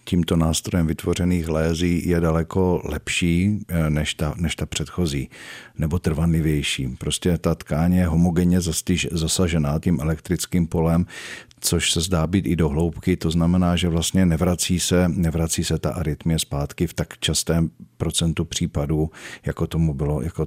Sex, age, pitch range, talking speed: male, 50-69, 80-90 Hz, 140 wpm